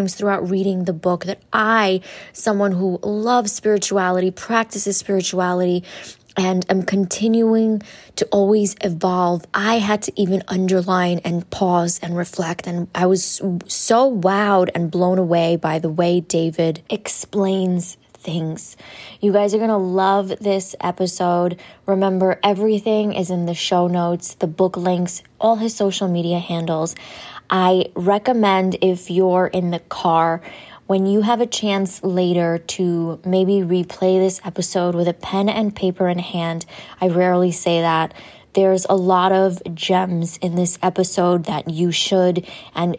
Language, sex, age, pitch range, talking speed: English, female, 20-39, 175-200 Hz, 145 wpm